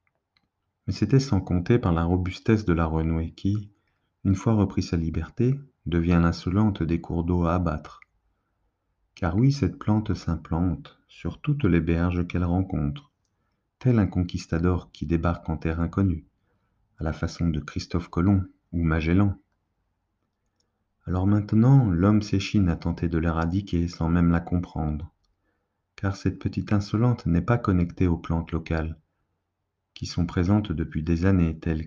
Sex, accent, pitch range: male, French, 85-100 Hz